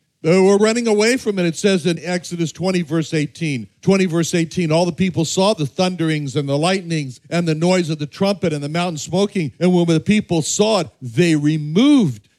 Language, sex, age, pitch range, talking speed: English, male, 60-79, 150-195 Hz, 205 wpm